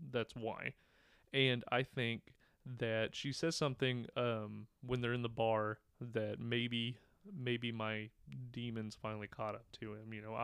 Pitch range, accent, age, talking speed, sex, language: 110-125 Hz, American, 30-49, 155 wpm, male, English